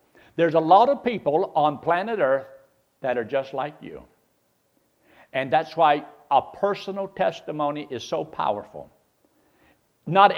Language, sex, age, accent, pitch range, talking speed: English, male, 60-79, American, 140-185 Hz, 135 wpm